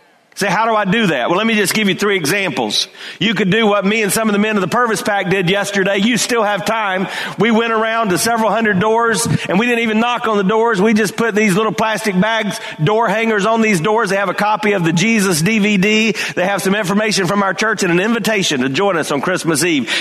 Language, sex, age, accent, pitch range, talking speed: English, male, 40-59, American, 190-220 Hz, 255 wpm